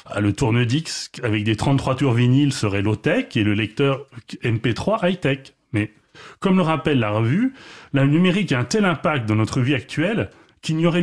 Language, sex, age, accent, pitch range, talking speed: French, male, 30-49, French, 115-150 Hz, 175 wpm